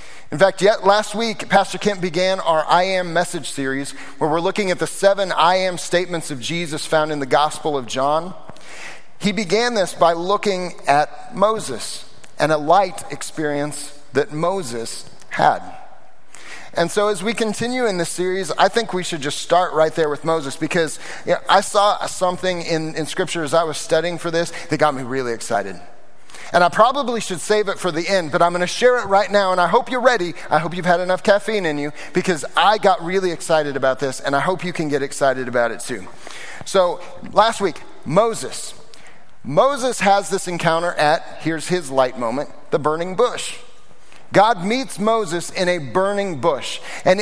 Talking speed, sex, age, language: 190 wpm, male, 30-49, English